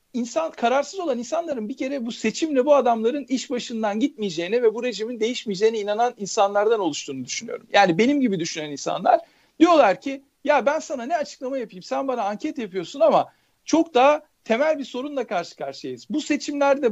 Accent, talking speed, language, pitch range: native, 170 wpm, Turkish, 220-295 Hz